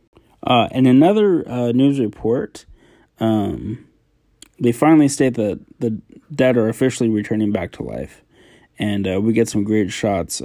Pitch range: 105-125 Hz